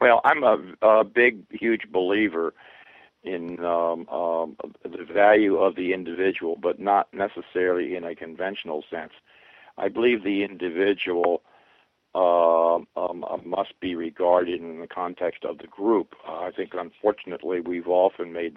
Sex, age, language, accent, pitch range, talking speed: male, 60-79, English, American, 85-105 Hz, 145 wpm